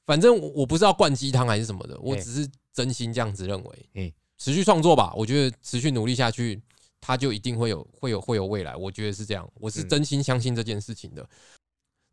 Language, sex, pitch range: Chinese, male, 110-140 Hz